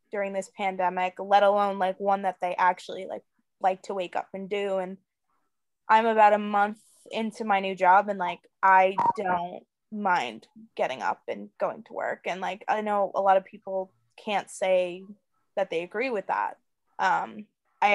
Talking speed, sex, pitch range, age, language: 180 wpm, female, 190-220 Hz, 20-39, English